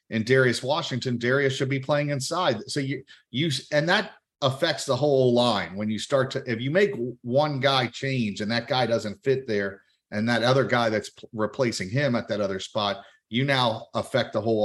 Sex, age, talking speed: male, 40-59, 205 wpm